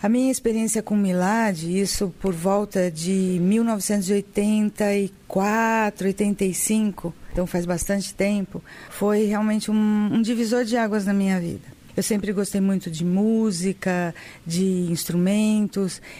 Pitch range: 190-225 Hz